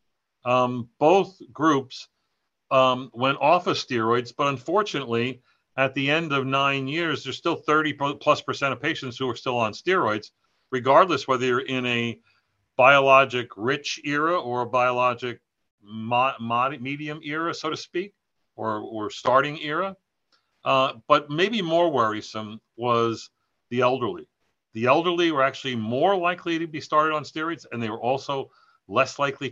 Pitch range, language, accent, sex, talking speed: 115-145 Hz, English, American, male, 150 wpm